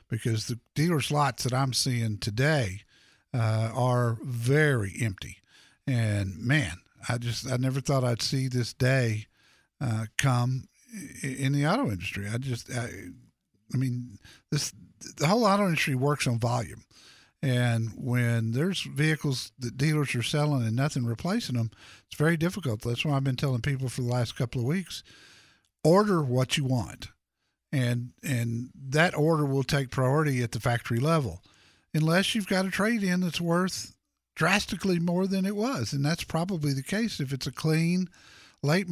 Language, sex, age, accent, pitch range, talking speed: English, male, 50-69, American, 120-165 Hz, 165 wpm